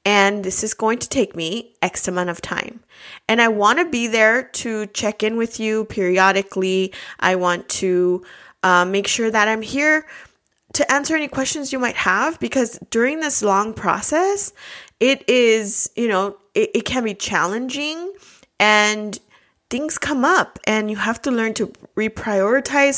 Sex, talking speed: female, 165 wpm